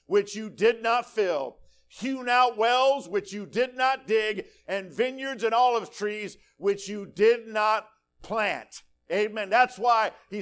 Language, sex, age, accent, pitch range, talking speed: English, male, 50-69, American, 210-265 Hz, 155 wpm